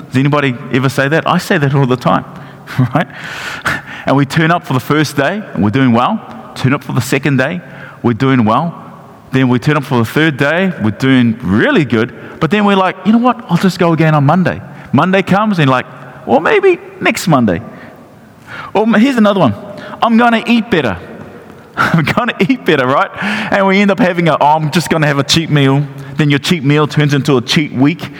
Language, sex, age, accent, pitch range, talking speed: English, male, 30-49, Australian, 135-195 Hz, 215 wpm